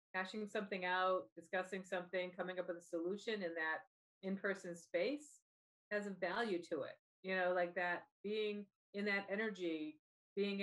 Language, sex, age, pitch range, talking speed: English, female, 50-69, 170-200 Hz, 160 wpm